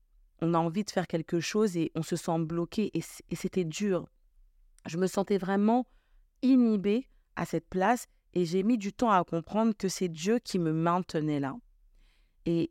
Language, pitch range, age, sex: French, 160-200 Hz, 40-59, female